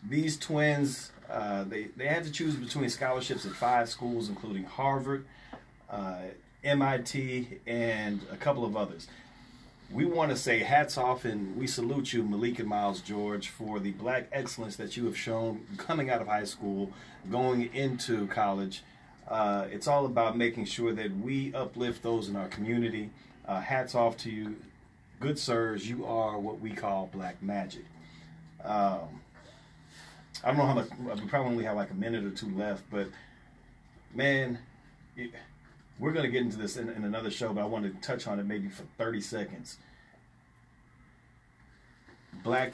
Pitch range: 100-130 Hz